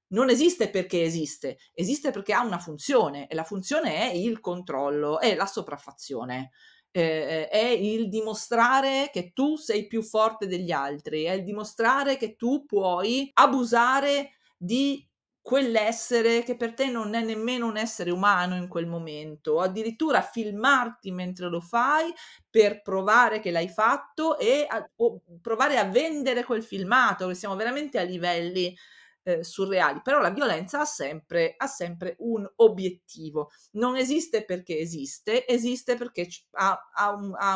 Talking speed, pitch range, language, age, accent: 150 wpm, 170-235 Hz, Italian, 40-59, native